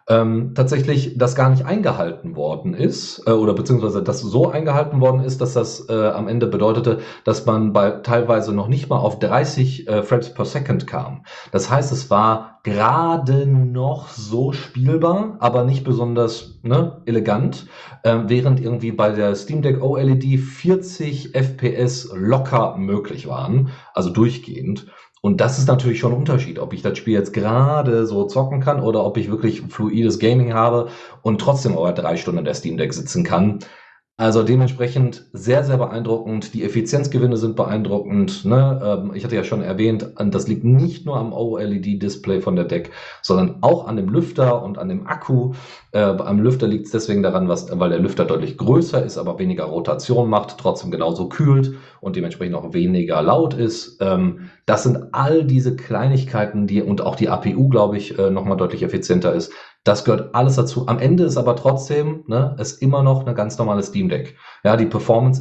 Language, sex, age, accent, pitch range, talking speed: German, male, 40-59, German, 110-135 Hz, 180 wpm